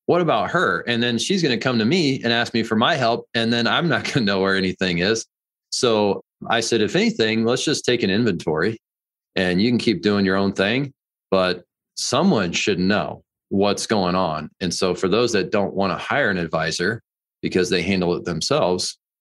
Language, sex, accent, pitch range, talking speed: English, male, American, 90-110 Hz, 210 wpm